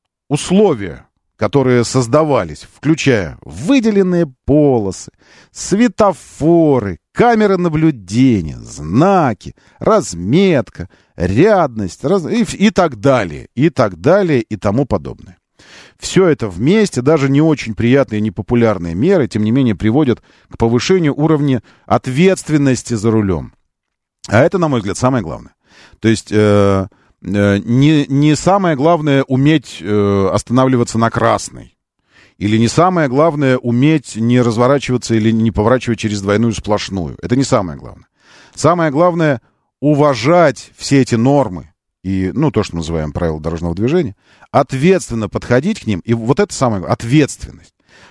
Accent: native